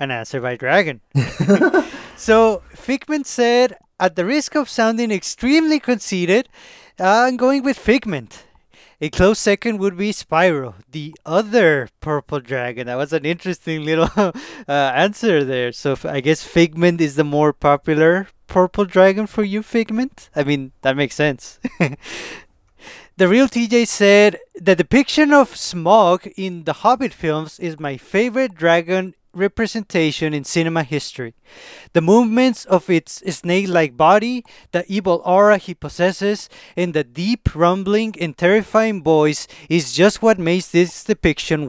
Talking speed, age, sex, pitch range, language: 145 wpm, 20-39, male, 155-215 Hz, English